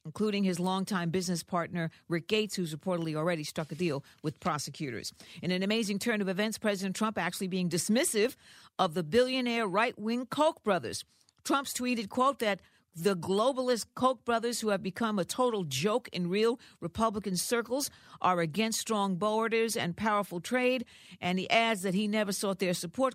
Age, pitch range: 50-69, 160-210 Hz